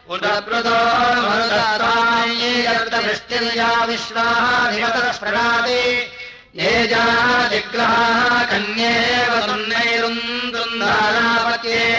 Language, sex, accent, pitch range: Hindi, male, native, 230-235 Hz